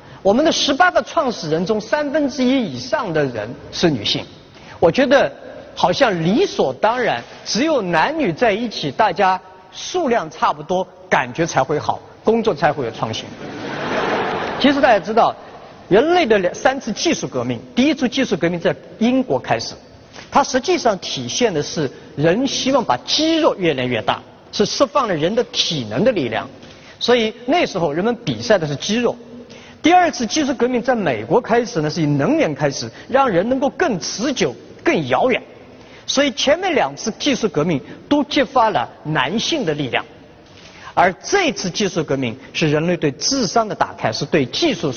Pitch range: 165-275 Hz